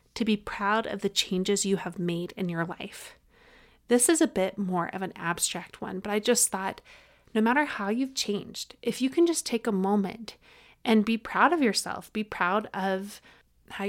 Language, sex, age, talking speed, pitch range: English, female, 30-49, 200 wpm, 185-225 Hz